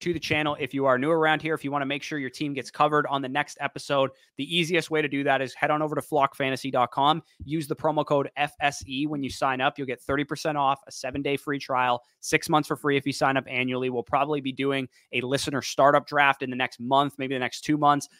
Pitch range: 125-145 Hz